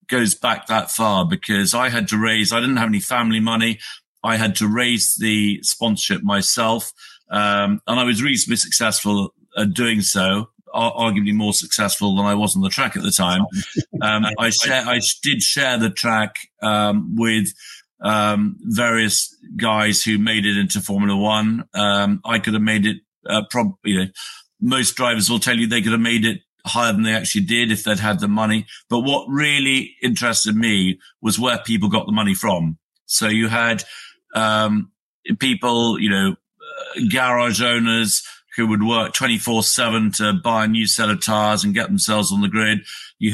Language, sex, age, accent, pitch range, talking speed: English, male, 50-69, British, 105-120 Hz, 180 wpm